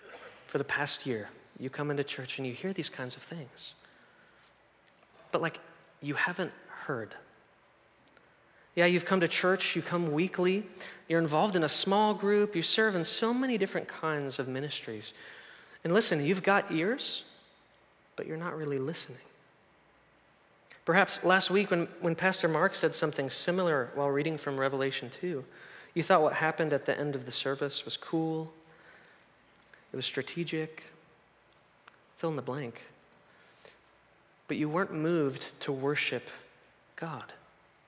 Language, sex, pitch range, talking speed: English, male, 140-180 Hz, 145 wpm